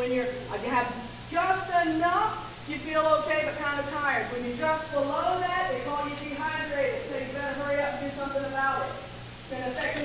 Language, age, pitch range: English, 40-59, 270-320 Hz